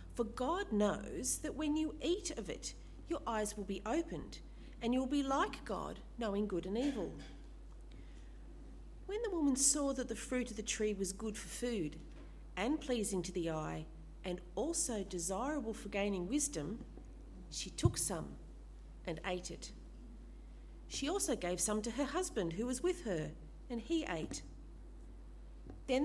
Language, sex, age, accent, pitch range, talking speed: English, female, 40-59, Australian, 190-275 Hz, 160 wpm